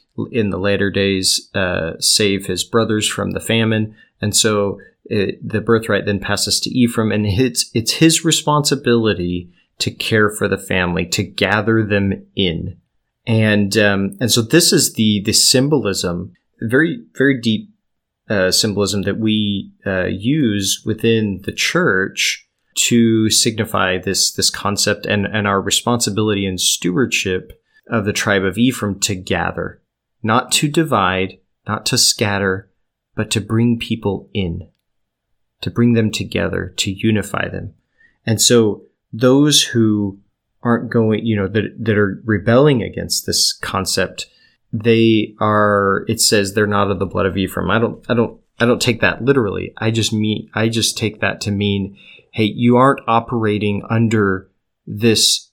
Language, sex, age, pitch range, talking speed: English, male, 30-49, 100-115 Hz, 150 wpm